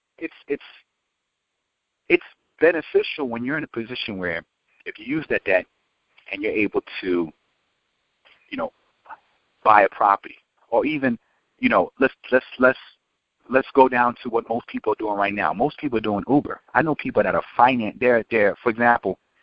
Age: 40-59